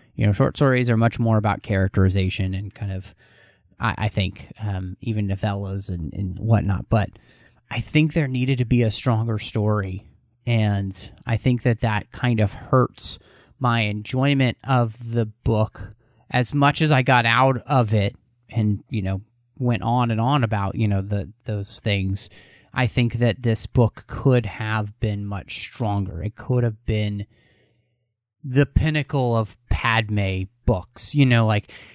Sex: male